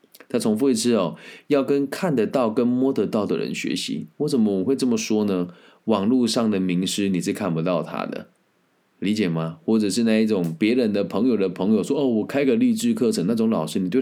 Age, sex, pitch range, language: 20-39, male, 90-140 Hz, Chinese